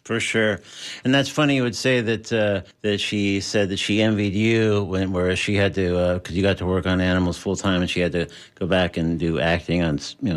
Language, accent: English, American